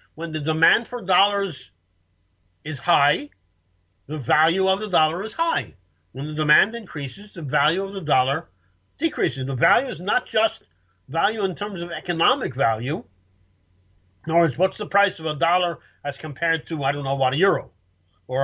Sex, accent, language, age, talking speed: male, American, English, 50-69, 175 wpm